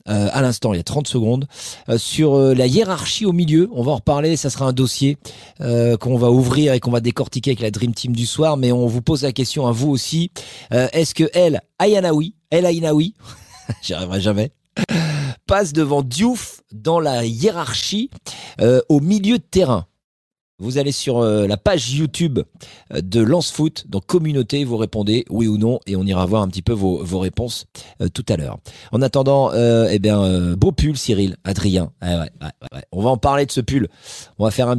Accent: French